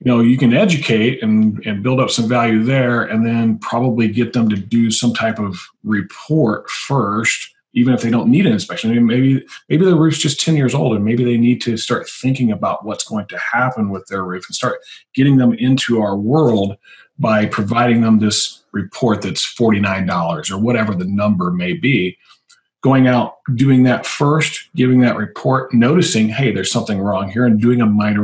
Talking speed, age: 195 wpm, 40-59